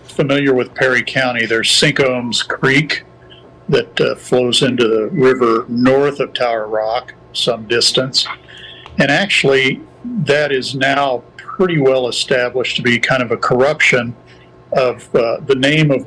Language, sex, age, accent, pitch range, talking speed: English, male, 50-69, American, 115-145 Hz, 140 wpm